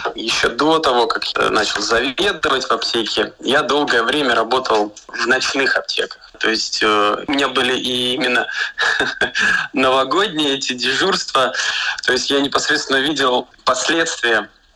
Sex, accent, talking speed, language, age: male, native, 130 wpm, Russian, 20-39